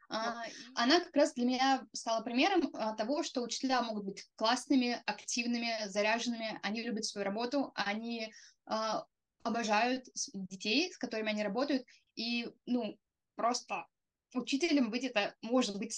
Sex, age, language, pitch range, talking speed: female, 20-39, Russian, 210-255 Hz, 130 wpm